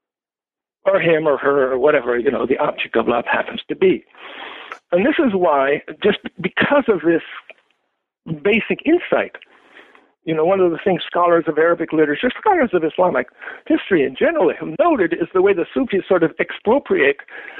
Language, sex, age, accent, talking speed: English, male, 60-79, American, 175 wpm